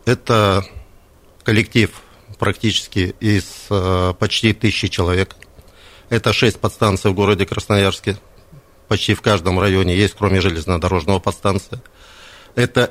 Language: Russian